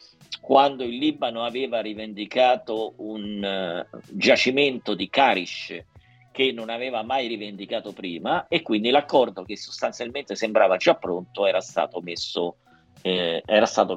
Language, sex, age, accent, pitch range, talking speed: Italian, male, 50-69, native, 100-125 Hz, 130 wpm